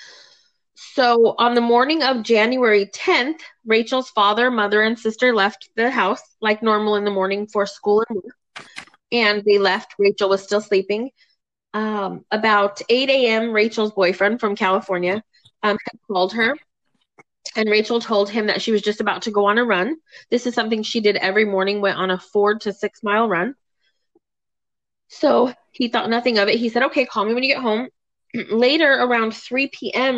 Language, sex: English, female